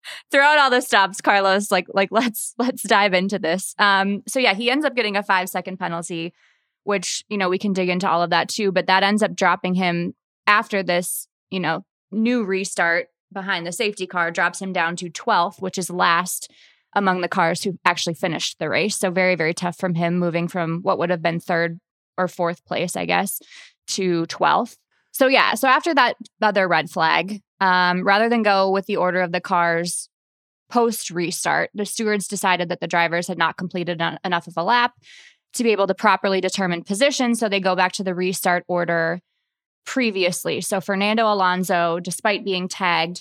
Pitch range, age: 175-205 Hz, 20-39